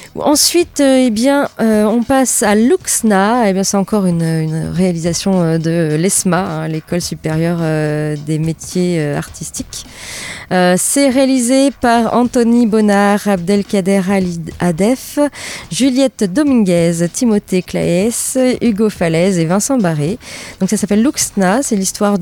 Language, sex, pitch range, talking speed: French, female, 175-245 Hz, 130 wpm